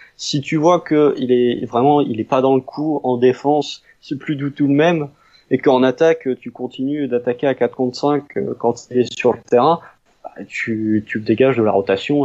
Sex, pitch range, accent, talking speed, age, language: male, 120-150 Hz, French, 210 wpm, 20-39, French